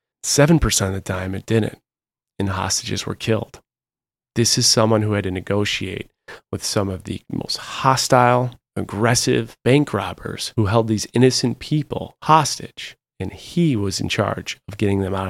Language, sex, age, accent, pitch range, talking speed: English, male, 30-49, American, 100-125 Hz, 165 wpm